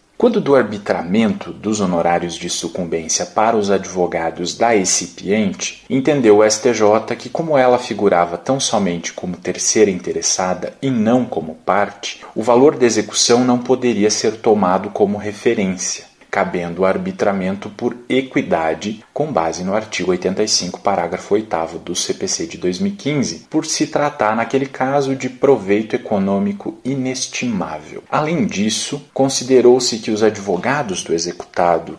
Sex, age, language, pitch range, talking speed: male, 40-59, Portuguese, 95-130 Hz, 135 wpm